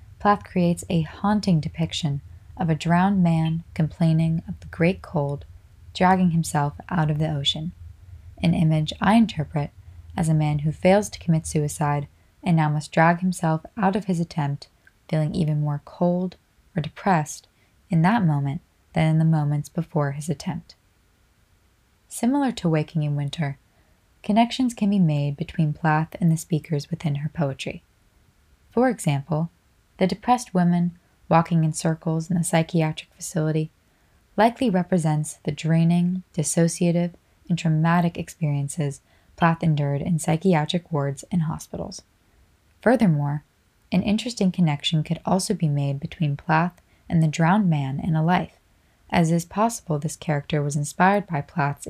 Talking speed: 150 wpm